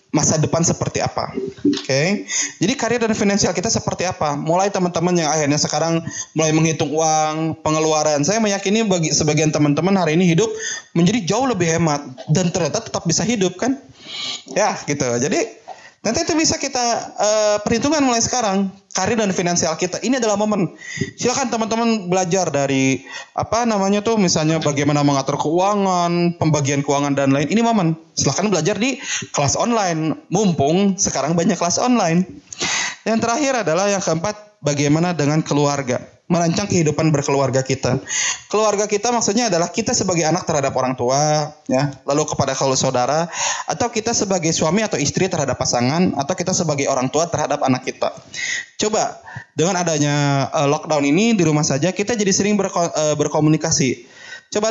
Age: 20-39